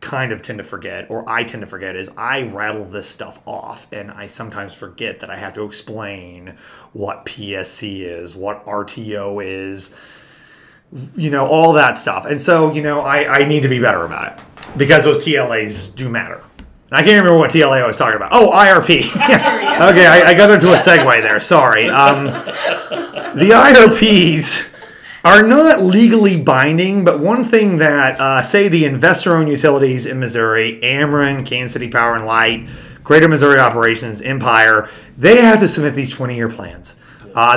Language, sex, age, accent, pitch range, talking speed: English, male, 30-49, American, 110-150 Hz, 175 wpm